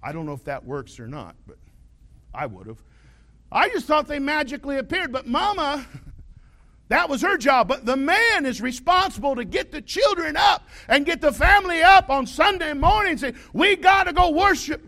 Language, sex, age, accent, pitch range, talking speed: English, male, 50-69, American, 230-290 Hz, 200 wpm